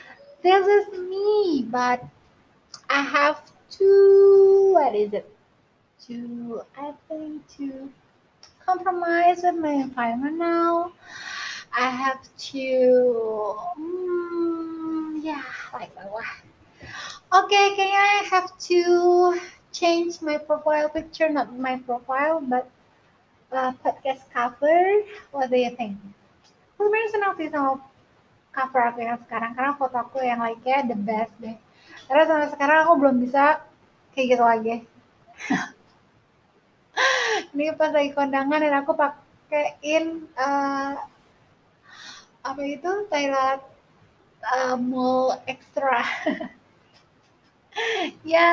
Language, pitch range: English, 255-340 Hz